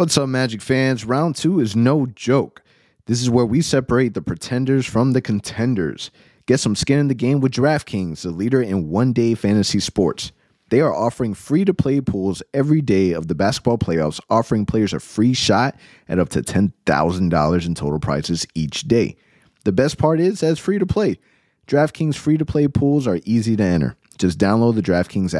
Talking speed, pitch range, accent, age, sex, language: 180 wpm, 95-140 Hz, American, 30-49, male, English